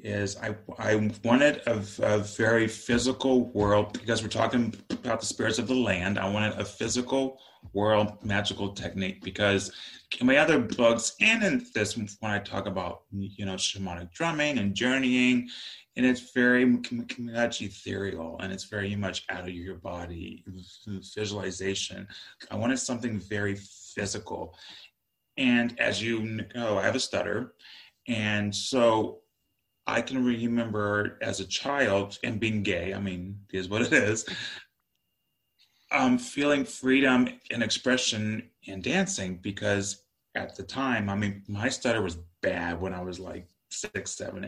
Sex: male